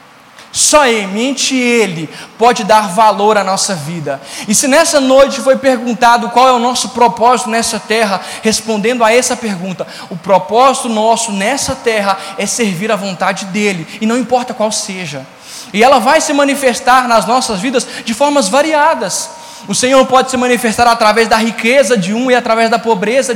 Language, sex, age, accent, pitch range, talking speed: Portuguese, male, 20-39, Brazilian, 210-255 Hz, 170 wpm